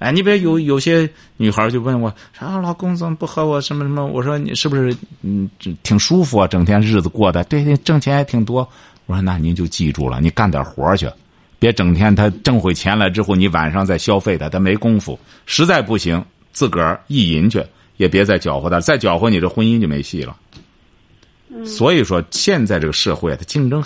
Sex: male